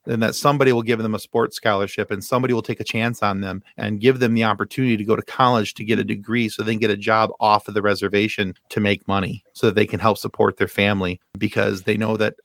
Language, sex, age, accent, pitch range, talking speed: English, male, 30-49, American, 105-130 Hz, 265 wpm